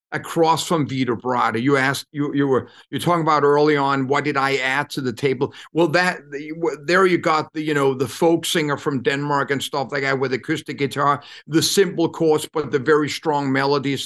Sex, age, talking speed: male, 50-69, 205 wpm